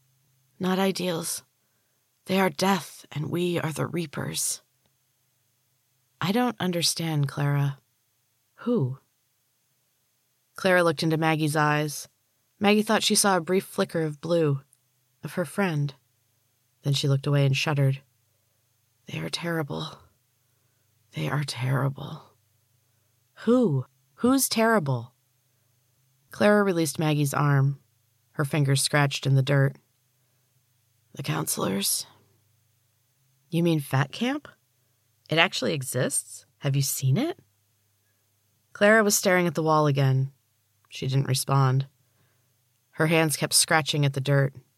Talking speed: 115 wpm